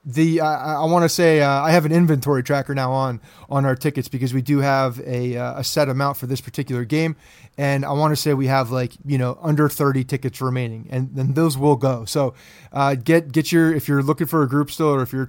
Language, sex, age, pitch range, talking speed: English, male, 30-49, 130-150 Hz, 250 wpm